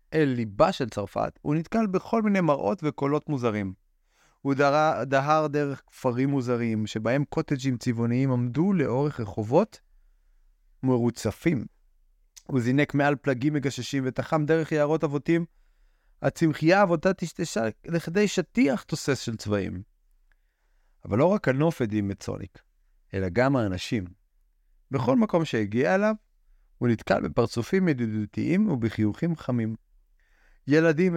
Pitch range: 110-160 Hz